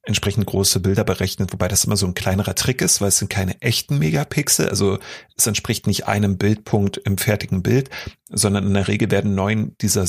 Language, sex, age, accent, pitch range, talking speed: German, male, 40-59, German, 100-120 Hz, 200 wpm